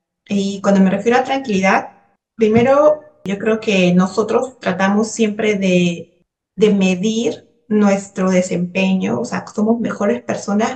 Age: 30-49